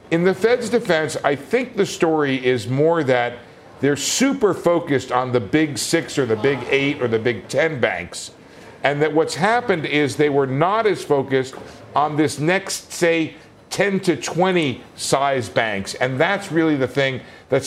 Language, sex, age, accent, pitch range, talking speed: English, male, 50-69, American, 125-160 Hz, 175 wpm